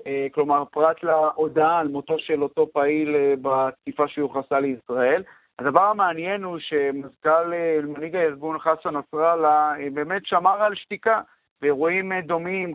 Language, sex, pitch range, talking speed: Hebrew, male, 145-180 Hz, 115 wpm